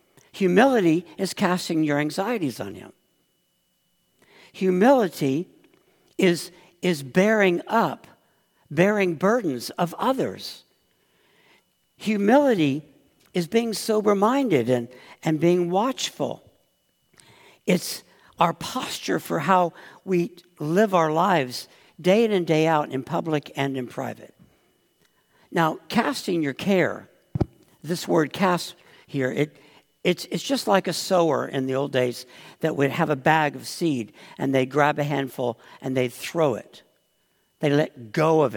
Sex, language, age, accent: male, English, 60-79, American